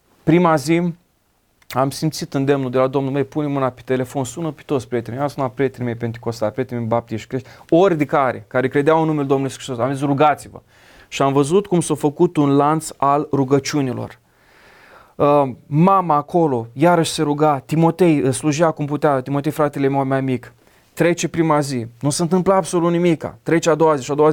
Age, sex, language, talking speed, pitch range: 30-49, male, Romanian, 190 wpm, 145-195 Hz